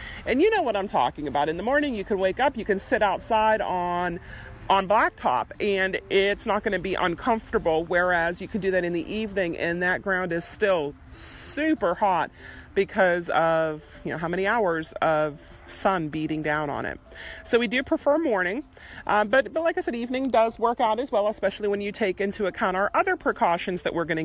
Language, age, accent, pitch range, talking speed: English, 40-59, American, 175-235 Hz, 210 wpm